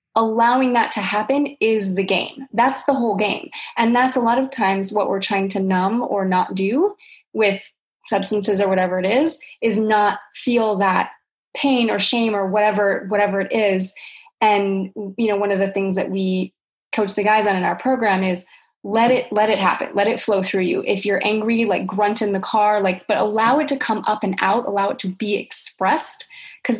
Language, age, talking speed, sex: English, 20-39, 210 wpm, female